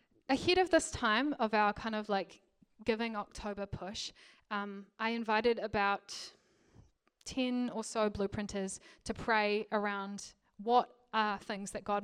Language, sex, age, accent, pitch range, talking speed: English, female, 10-29, Australian, 215-290 Hz, 140 wpm